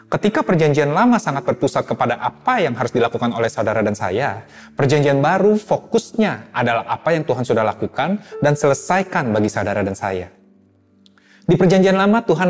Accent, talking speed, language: native, 160 wpm, Indonesian